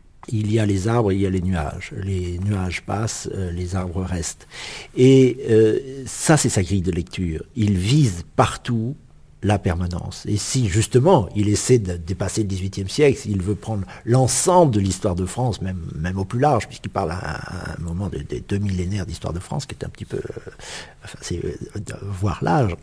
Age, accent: 60-79, French